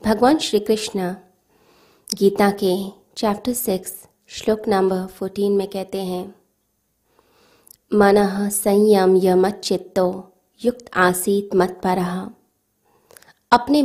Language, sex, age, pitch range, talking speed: Hindi, female, 20-39, 190-225 Hz, 95 wpm